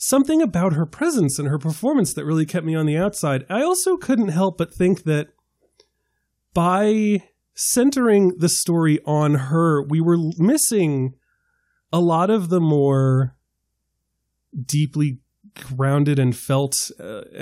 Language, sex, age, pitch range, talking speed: English, male, 30-49, 135-190 Hz, 140 wpm